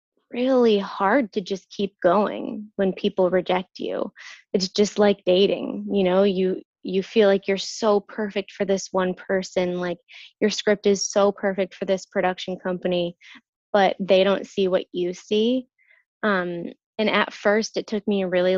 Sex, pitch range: female, 185-215 Hz